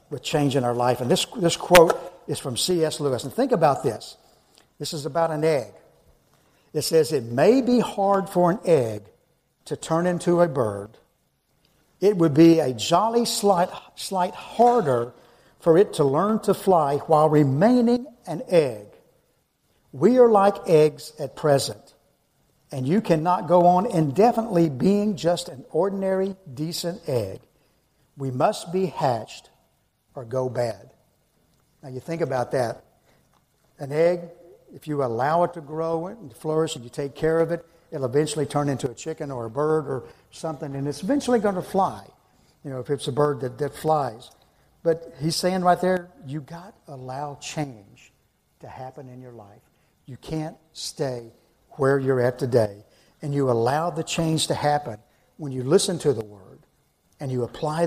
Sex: male